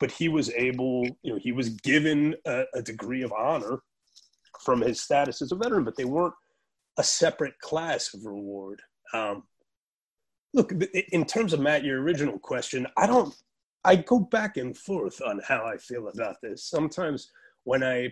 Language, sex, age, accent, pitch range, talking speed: English, male, 30-49, American, 105-155 Hz, 180 wpm